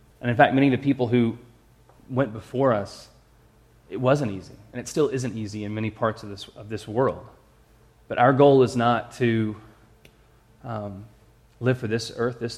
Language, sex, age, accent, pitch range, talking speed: English, male, 20-39, American, 110-130 Hz, 185 wpm